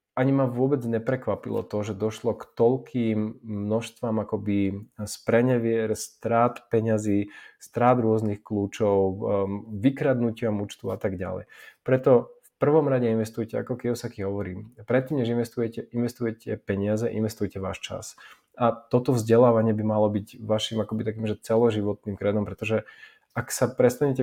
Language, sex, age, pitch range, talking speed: Slovak, male, 20-39, 105-120 Hz, 135 wpm